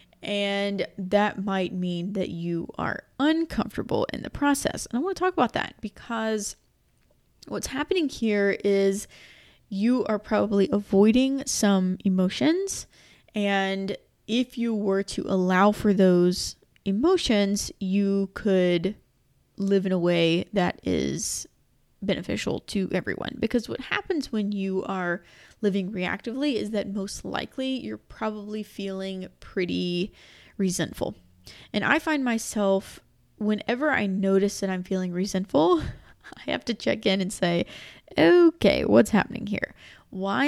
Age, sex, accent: 20-39, female, American